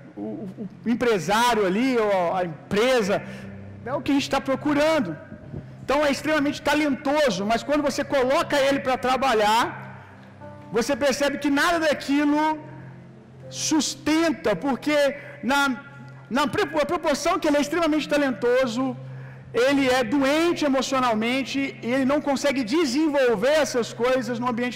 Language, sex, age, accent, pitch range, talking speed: Gujarati, male, 50-69, Brazilian, 210-290 Hz, 125 wpm